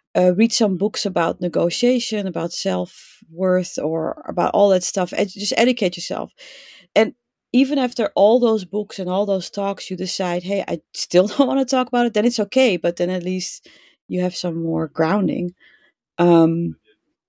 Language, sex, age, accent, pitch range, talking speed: English, female, 30-49, Dutch, 180-225 Hz, 175 wpm